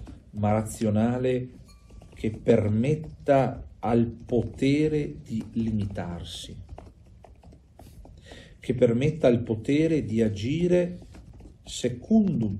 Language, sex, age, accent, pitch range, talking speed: Italian, male, 50-69, native, 85-115 Hz, 70 wpm